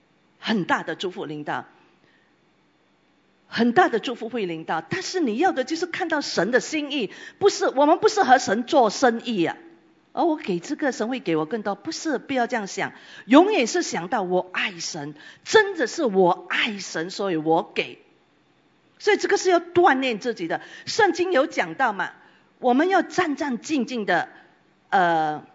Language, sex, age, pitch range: English, female, 50-69, 235-360 Hz